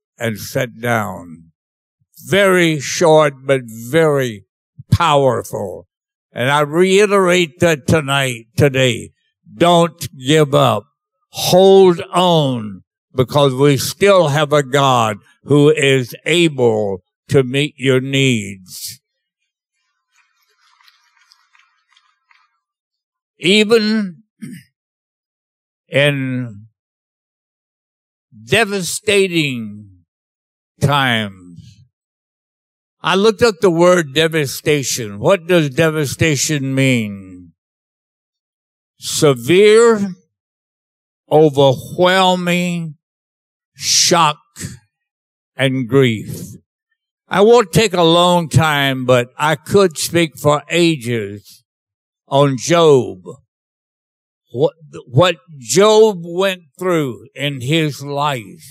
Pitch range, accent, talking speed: 120-175 Hz, American, 75 wpm